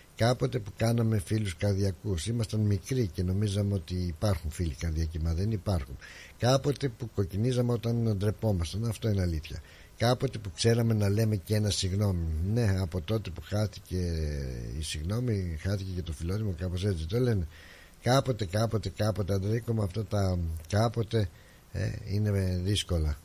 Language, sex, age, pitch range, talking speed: Greek, male, 60-79, 85-110 Hz, 145 wpm